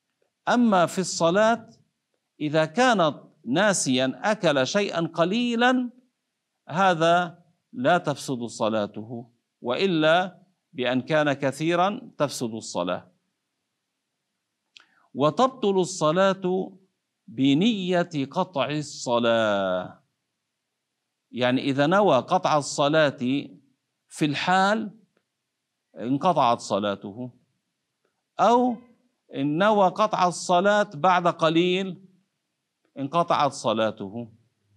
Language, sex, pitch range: Arabic, male, 135-185 Hz